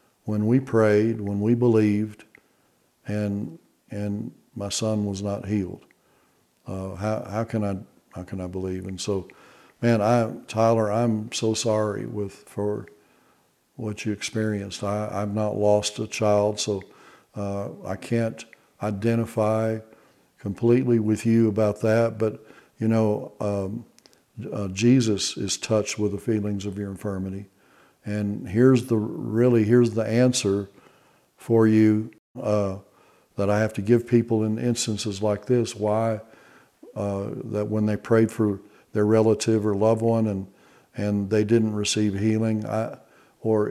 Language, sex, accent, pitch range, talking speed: English, male, American, 100-115 Hz, 145 wpm